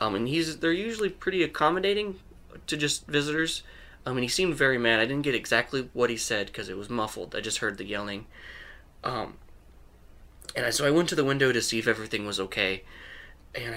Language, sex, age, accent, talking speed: English, male, 20-39, American, 200 wpm